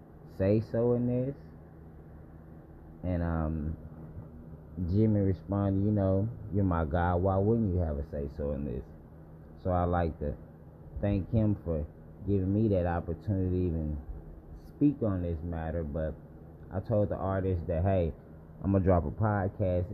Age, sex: 20-39, male